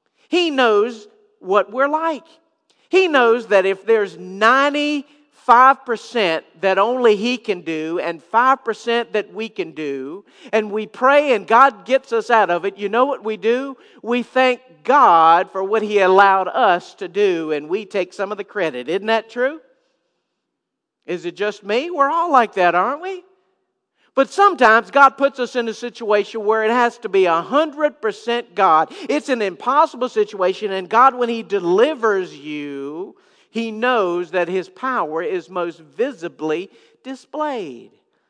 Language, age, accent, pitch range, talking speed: English, 50-69, American, 180-260 Hz, 160 wpm